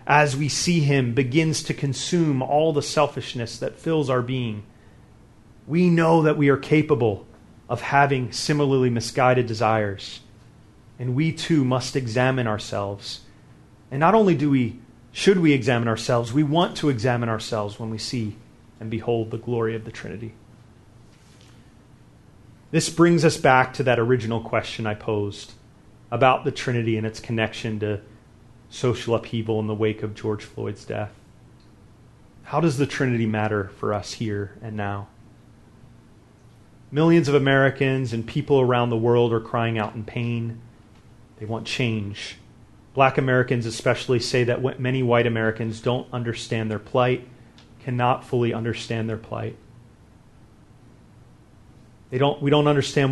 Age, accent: 30-49, American